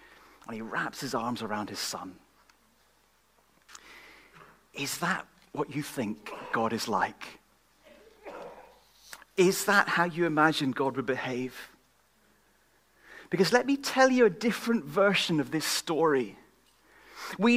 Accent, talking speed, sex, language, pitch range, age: British, 125 wpm, male, English, 165-235 Hz, 40-59